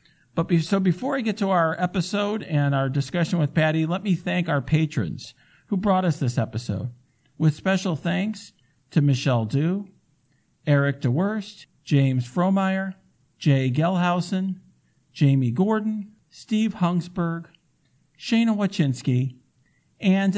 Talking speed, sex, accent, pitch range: 125 wpm, male, American, 135-185 Hz